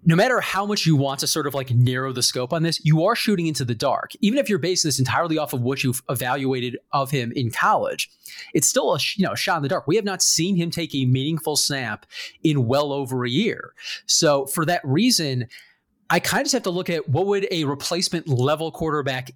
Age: 30-49